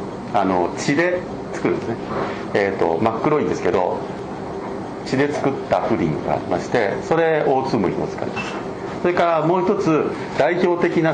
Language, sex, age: Japanese, male, 50-69